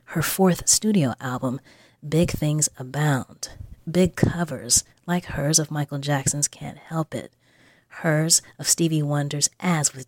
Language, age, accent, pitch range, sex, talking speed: English, 30-49, American, 135-165 Hz, female, 135 wpm